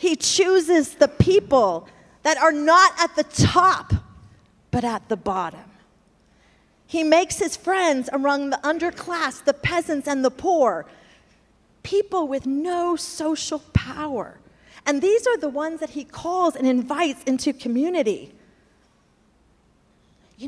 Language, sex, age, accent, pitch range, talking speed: English, female, 40-59, American, 245-335 Hz, 130 wpm